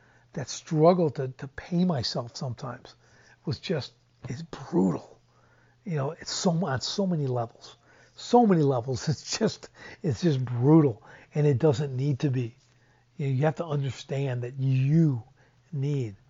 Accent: American